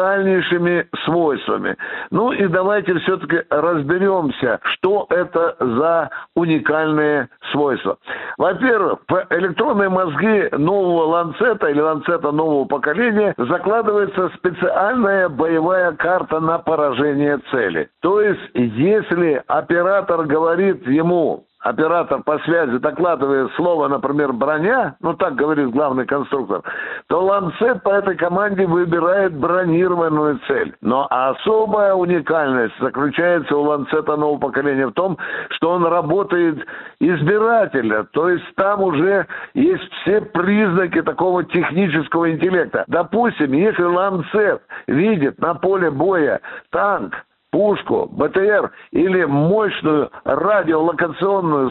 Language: Russian